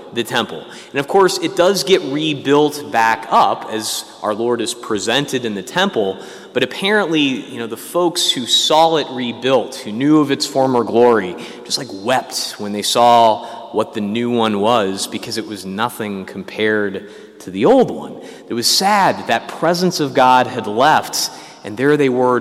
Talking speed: 185 wpm